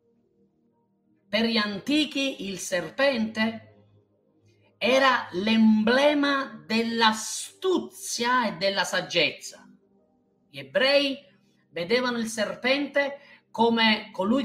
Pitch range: 190-260 Hz